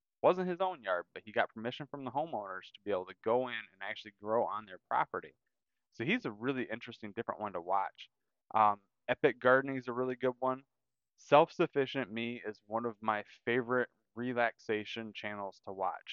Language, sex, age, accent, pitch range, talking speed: English, male, 20-39, American, 110-130 Hz, 190 wpm